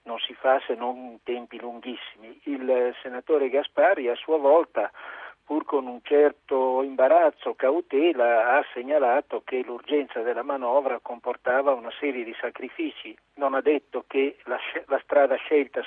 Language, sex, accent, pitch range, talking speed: Italian, male, native, 125-150 Hz, 150 wpm